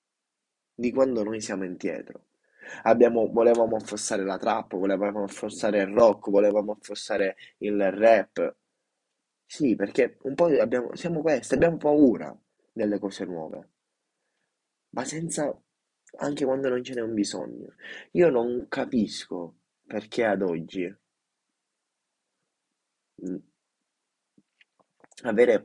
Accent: native